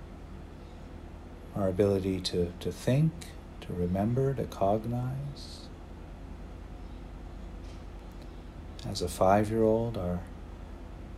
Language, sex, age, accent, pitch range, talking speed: English, male, 50-69, American, 85-95 Hz, 70 wpm